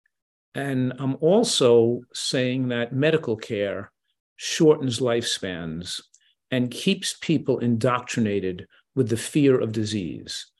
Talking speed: 100 wpm